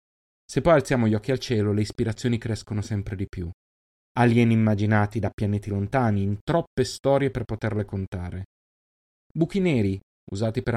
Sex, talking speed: male, 155 wpm